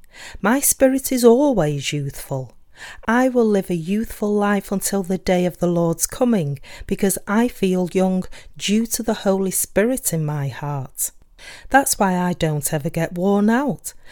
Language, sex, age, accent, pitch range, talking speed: English, female, 40-59, British, 155-215 Hz, 160 wpm